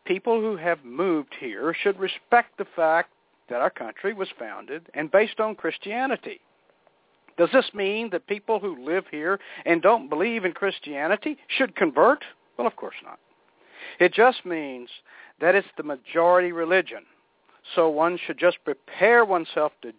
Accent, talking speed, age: American, 155 wpm, 60-79